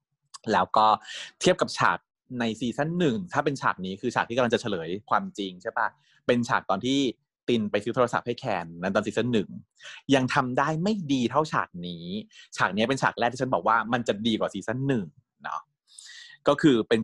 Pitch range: 100-140 Hz